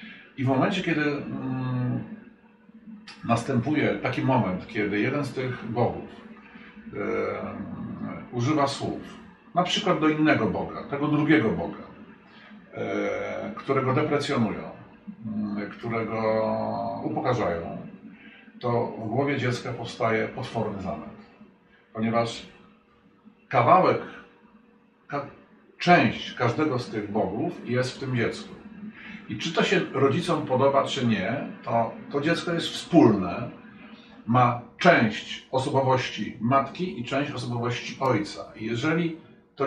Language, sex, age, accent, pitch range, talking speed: Polish, male, 50-69, native, 120-180 Hz, 105 wpm